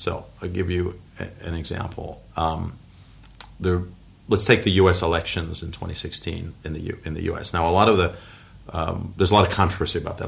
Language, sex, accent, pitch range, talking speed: English, male, American, 85-105 Hz, 200 wpm